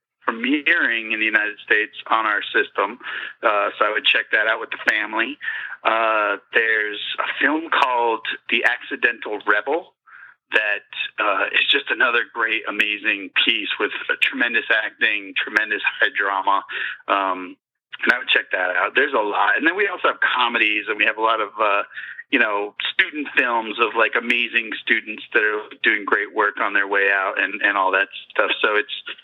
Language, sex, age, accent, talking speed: English, male, 30-49, American, 180 wpm